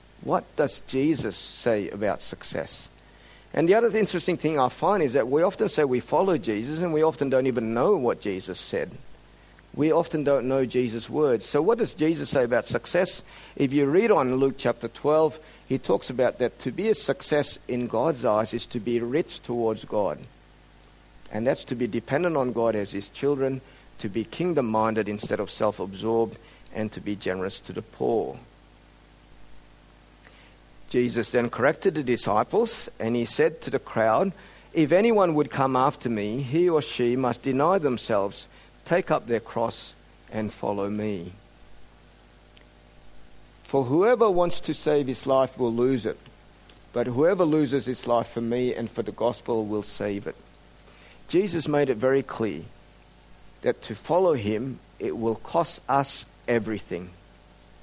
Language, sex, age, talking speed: English, male, 50-69, 165 wpm